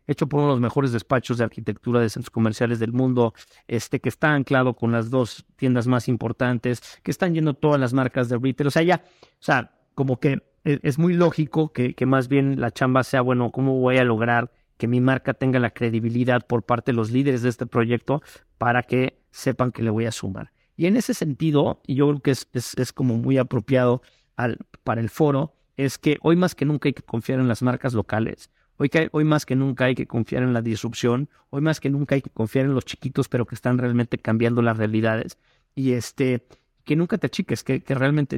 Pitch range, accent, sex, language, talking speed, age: 120-145 Hz, Mexican, male, Spanish, 225 wpm, 50-69